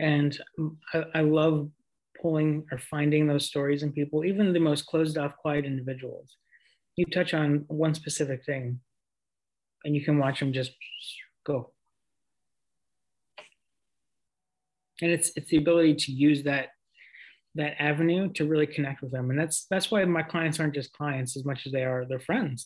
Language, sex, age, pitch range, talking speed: English, male, 30-49, 135-160 Hz, 165 wpm